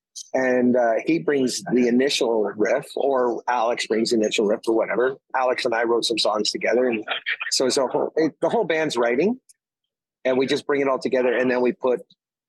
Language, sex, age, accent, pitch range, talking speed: English, male, 30-49, American, 115-135 Hz, 200 wpm